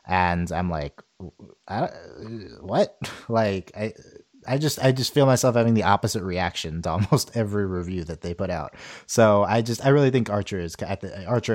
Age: 30-49